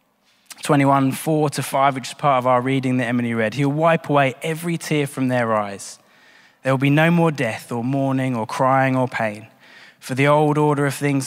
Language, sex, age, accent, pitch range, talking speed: English, male, 20-39, British, 135-190 Hz, 210 wpm